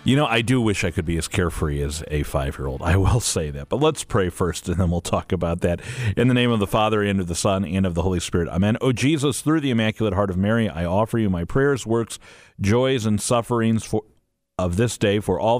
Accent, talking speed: American, 250 wpm